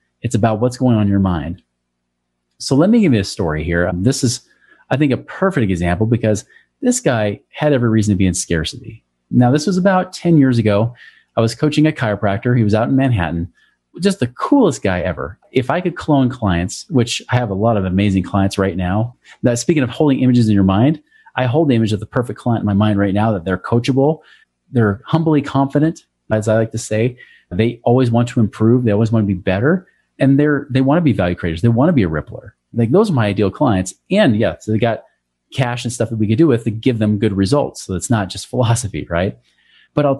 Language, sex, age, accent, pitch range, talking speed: English, male, 30-49, American, 95-135 Hz, 235 wpm